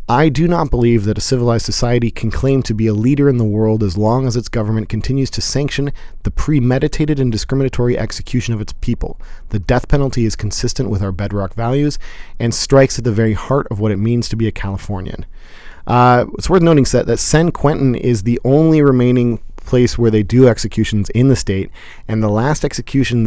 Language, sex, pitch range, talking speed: English, male, 110-130 Hz, 205 wpm